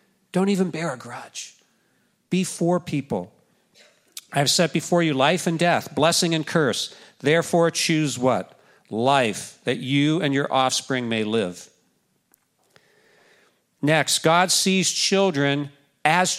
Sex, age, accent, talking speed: male, 50-69, American, 130 wpm